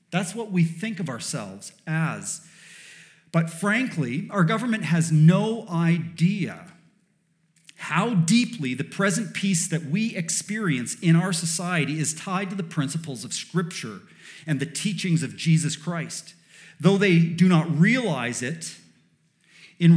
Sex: male